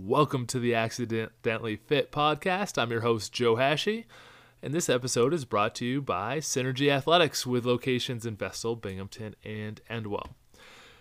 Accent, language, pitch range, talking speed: American, English, 110-135 Hz, 155 wpm